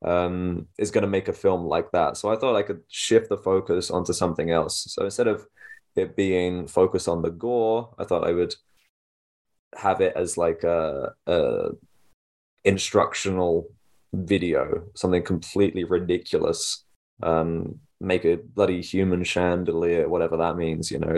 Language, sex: English, male